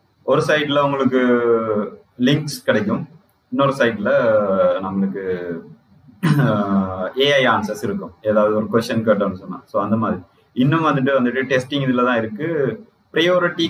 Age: 30-49